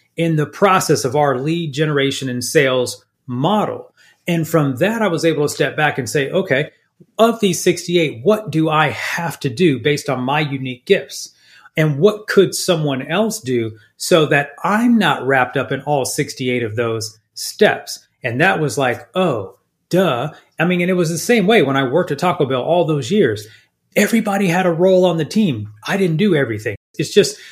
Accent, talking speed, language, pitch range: American, 195 wpm, English, 135-180 Hz